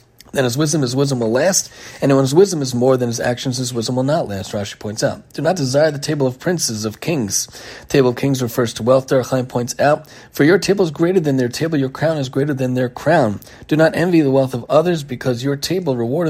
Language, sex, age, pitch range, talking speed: English, male, 40-59, 120-150 Hz, 250 wpm